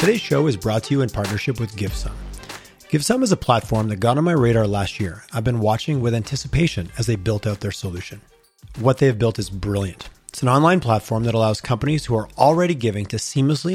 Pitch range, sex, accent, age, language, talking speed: 105-135 Hz, male, American, 30-49, English, 225 wpm